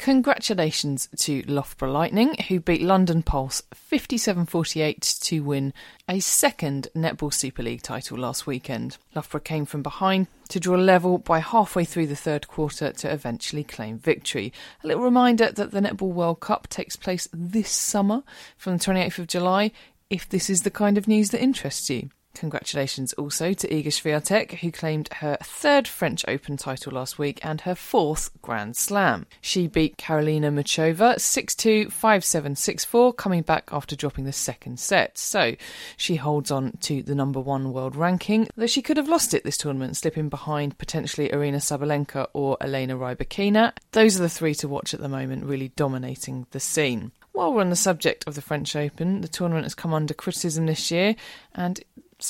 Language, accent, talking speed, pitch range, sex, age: English, British, 180 wpm, 140-185 Hz, female, 30-49